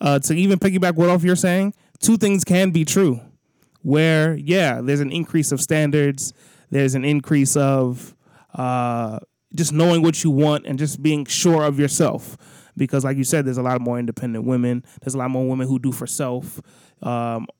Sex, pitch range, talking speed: male, 130-165 Hz, 190 wpm